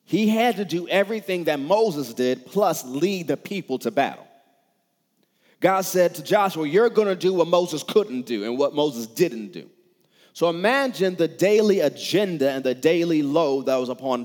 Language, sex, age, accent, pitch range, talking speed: English, male, 30-49, American, 155-200 Hz, 180 wpm